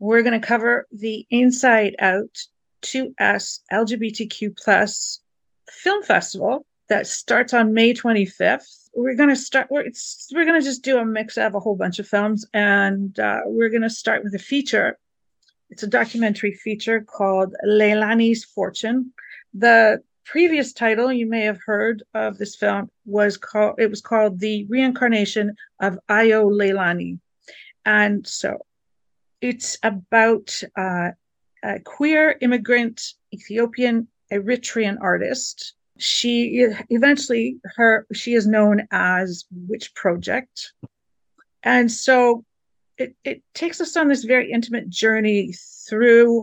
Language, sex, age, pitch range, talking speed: English, female, 50-69, 210-245 Hz, 130 wpm